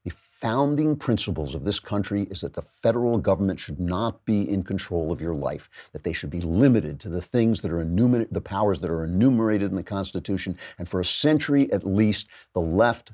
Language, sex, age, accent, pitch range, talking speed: English, male, 50-69, American, 95-120 Hz, 210 wpm